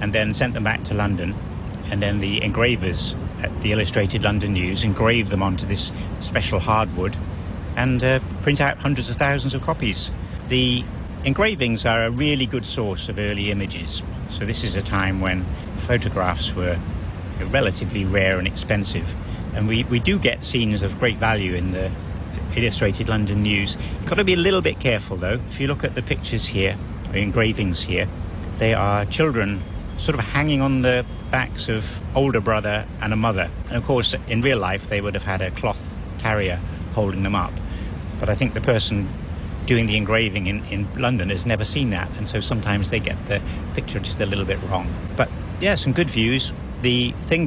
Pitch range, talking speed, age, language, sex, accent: 95-115 Hz, 190 wpm, 50-69, English, male, British